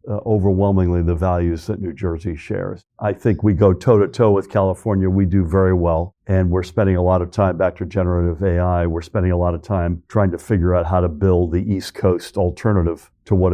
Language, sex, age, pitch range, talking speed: English, male, 60-79, 95-115 Hz, 215 wpm